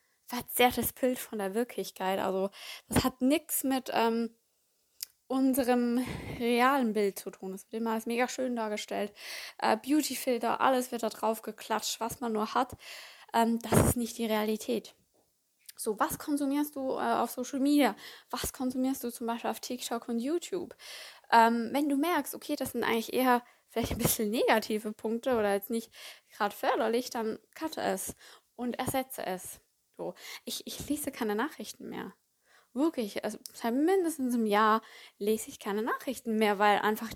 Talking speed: 160 wpm